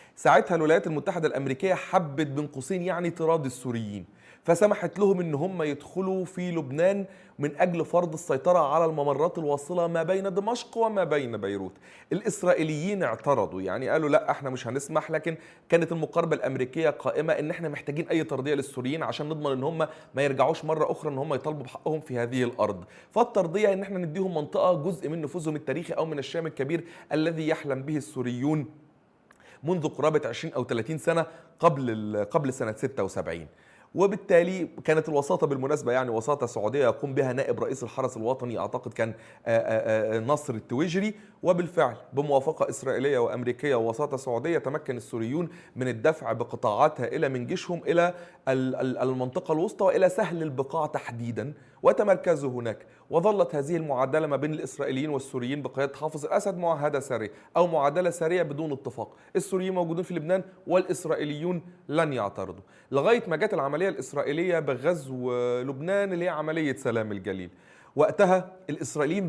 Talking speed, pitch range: 145 wpm, 130-175 Hz